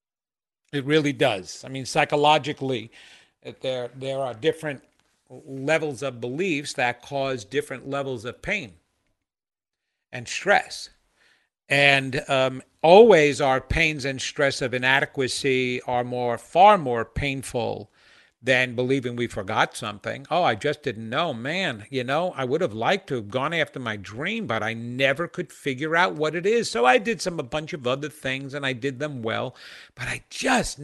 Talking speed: 165 wpm